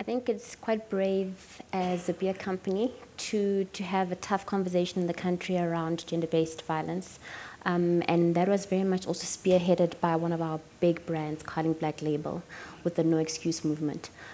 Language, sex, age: English, female, 20-39